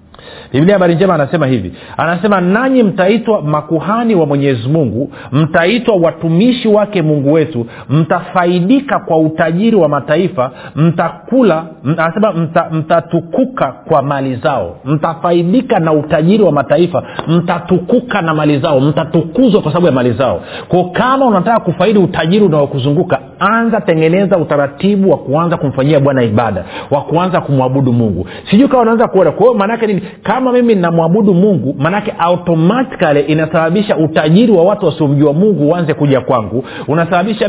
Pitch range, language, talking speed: 145-200 Hz, Swahili, 140 wpm